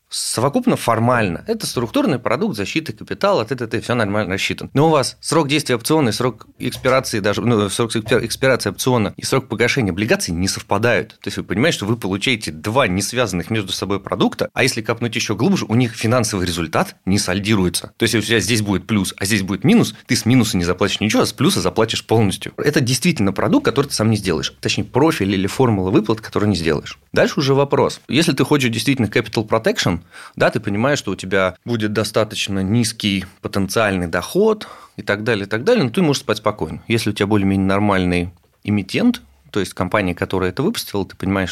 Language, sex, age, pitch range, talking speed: Russian, male, 30-49, 95-125 Hz, 200 wpm